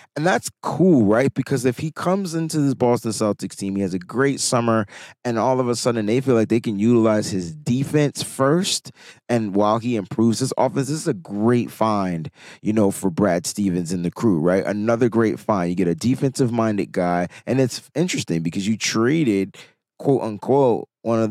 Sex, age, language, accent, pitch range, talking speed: male, 30-49, English, American, 105-130 Hz, 195 wpm